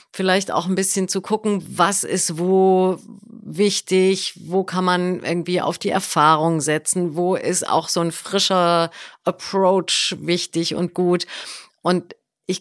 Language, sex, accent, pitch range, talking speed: German, female, German, 165-195 Hz, 145 wpm